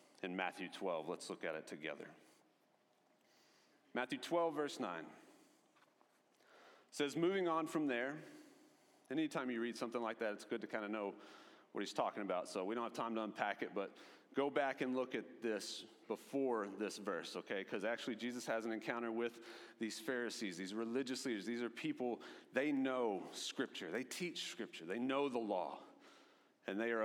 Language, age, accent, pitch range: English, 30-49, American, 110-150 Hz